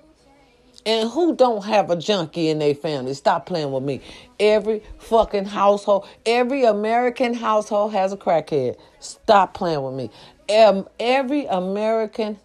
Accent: American